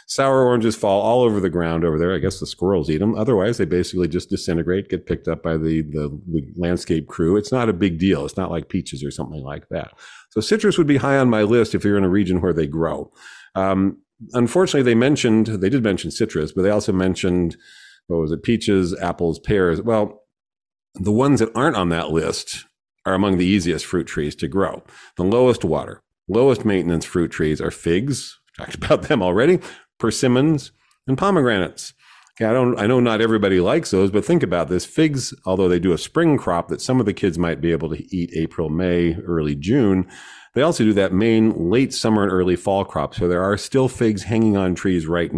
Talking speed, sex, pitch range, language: 215 wpm, male, 85-115 Hz, English